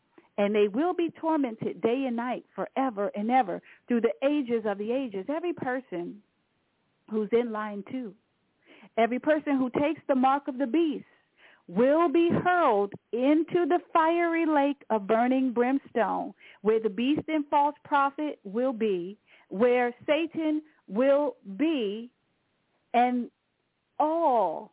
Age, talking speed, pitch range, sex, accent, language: 40-59, 135 wpm, 210-280 Hz, female, American, English